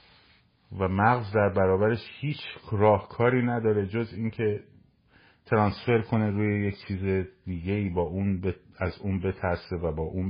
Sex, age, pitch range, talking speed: male, 50-69, 85-105 Hz, 155 wpm